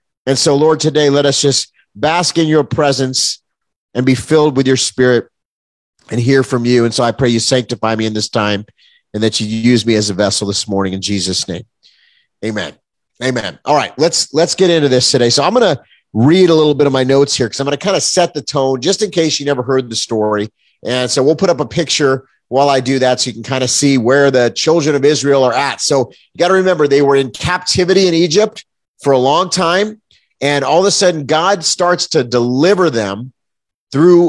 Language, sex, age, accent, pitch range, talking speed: English, male, 30-49, American, 130-170 Hz, 235 wpm